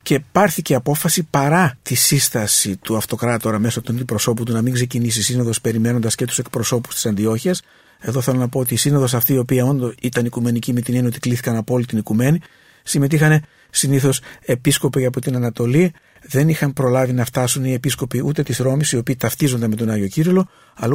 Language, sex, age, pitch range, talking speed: English, male, 50-69, 120-150 Hz, 195 wpm